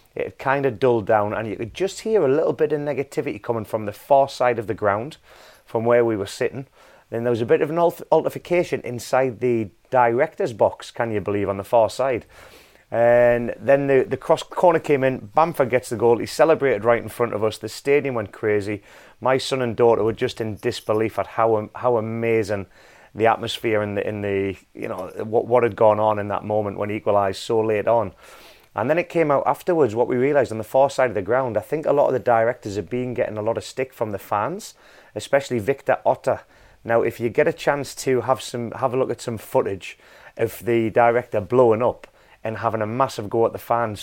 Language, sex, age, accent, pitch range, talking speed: English, male, 30-49, British, 110-130 Hz, 230 wpm